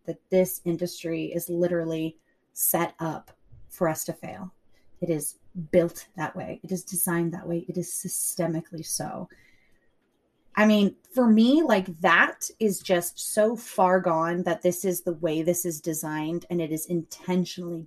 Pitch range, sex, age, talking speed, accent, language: 170-195 Hz, female, 30-49, 160 wpm, American, English